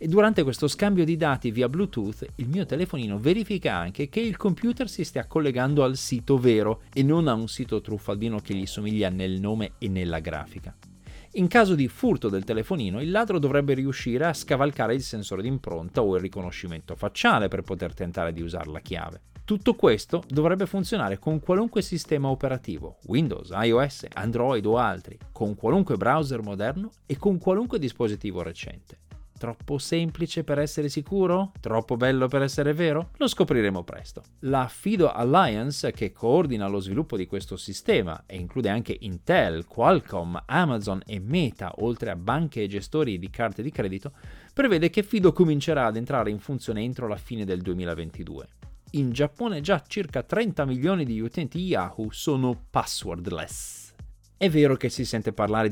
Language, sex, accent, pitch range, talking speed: Italian, male, native, 100-155 Hz, 165 wpm